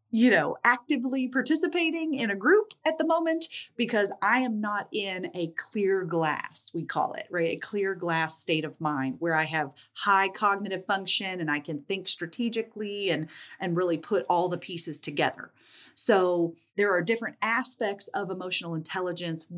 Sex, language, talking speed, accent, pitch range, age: female, English, 170 wpm, American, 165-220 Hz, 40-59